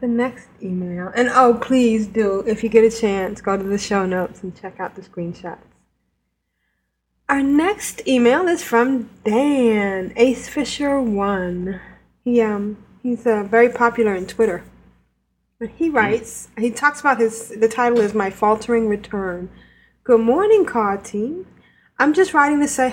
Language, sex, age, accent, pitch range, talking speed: English, female, 20-39, American, 200-255 Hz, 155 wpm